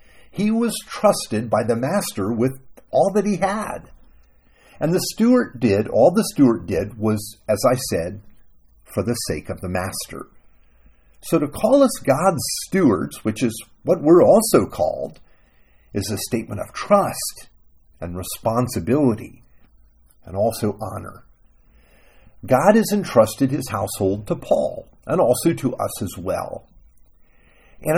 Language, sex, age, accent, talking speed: English, male, 50-69, American, 140 wpm